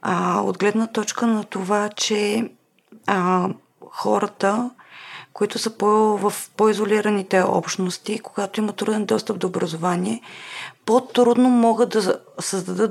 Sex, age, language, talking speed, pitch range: female, 30-49, Bulgarian, 100 wpm, 195-230 Hz